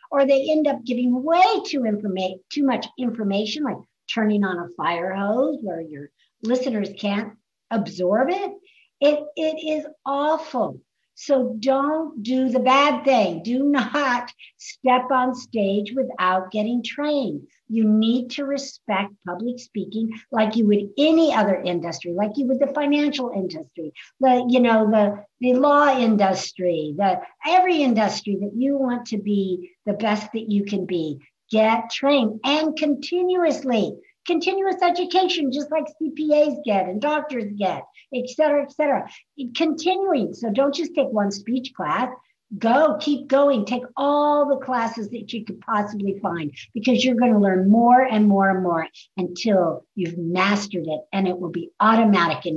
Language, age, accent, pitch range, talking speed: English, 60-79, American, 205-290 Hz, 155 wpm